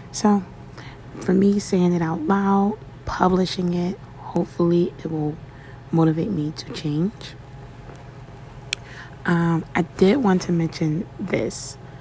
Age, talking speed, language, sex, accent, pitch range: 20-39, 115 wpm, English, female, American, 135-170 Hz